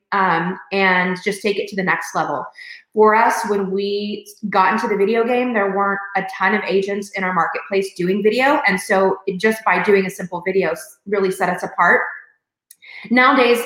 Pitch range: 185-235 Hz